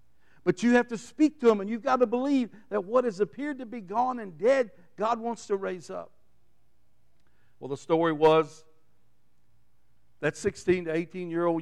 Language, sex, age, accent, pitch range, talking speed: English, male, 60-79, American, 140-175 Hz, 175 wpm